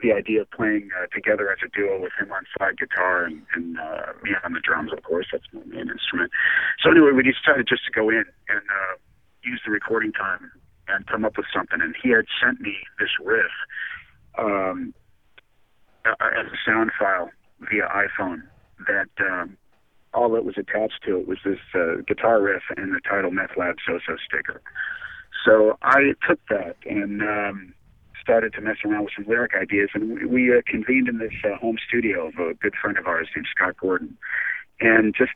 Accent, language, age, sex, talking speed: American, English, 40-59, male, 195 wpm